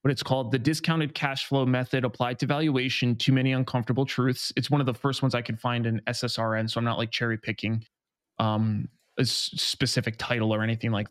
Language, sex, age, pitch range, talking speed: English, male, 20-39, 120-135 Hz, 210 wpm